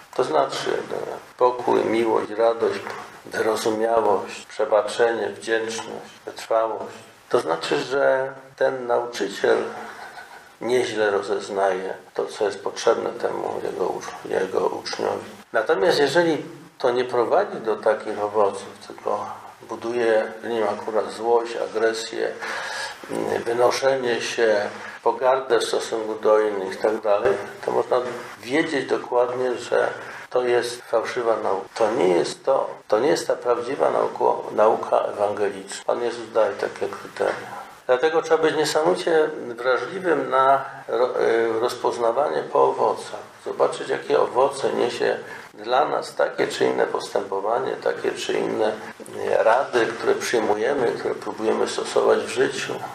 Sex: male